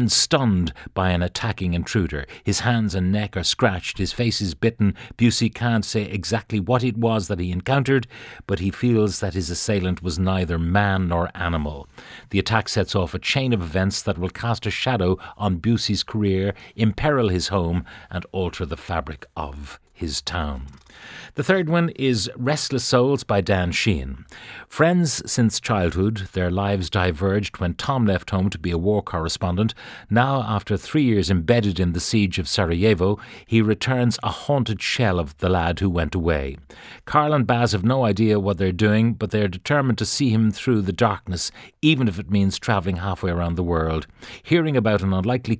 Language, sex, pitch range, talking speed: English, male, 90-115 Hz, 180 wpm